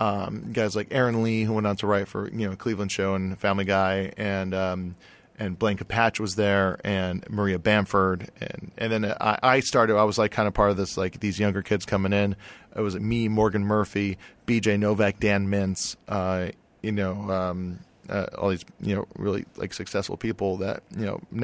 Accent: American